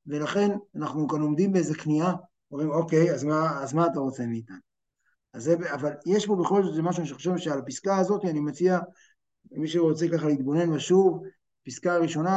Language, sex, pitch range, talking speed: Hebrew, male, 150-195 Hz, 180 wpm